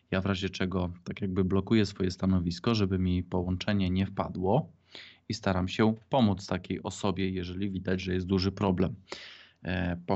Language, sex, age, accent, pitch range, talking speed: Polish, male, 20-39, native, 90-100 Hz, 160 wpm